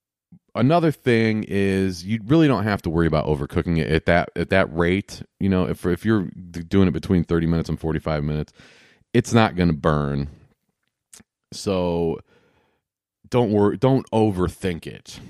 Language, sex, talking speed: English, male, 160 wpm